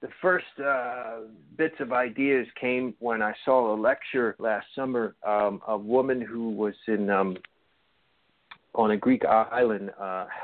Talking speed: 150 wpm